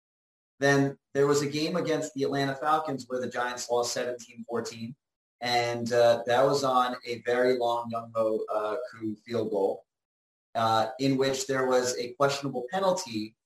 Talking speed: 150 wpm